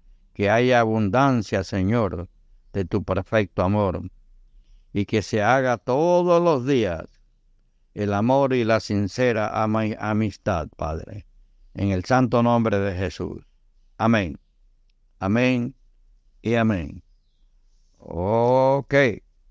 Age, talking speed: 60-79, 100 wpm